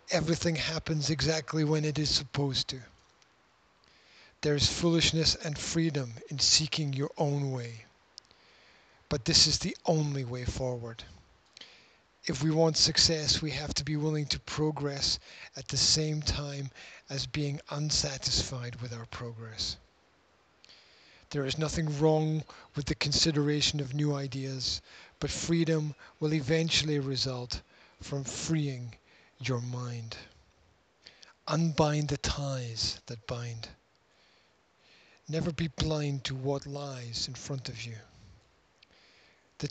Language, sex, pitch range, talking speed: English, male, 120-150 Hz, 120 wpm